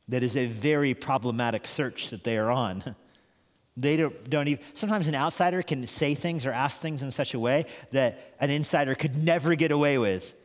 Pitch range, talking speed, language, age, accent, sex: 125-160 Hz, 200 wpm, English, 40-59, American, male